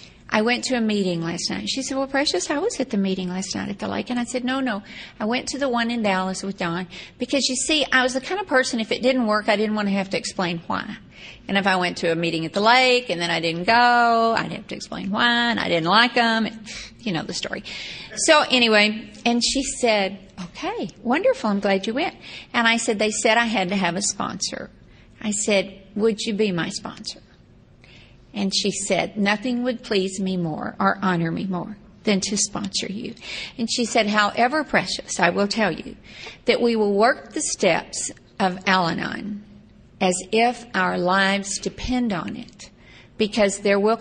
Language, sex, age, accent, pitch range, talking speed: English, female, 50-69, American, 190-235 Hz, 215 wpm